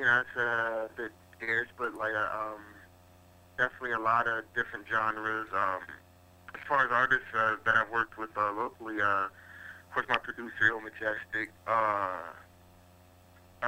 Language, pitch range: English, 90-115 Hz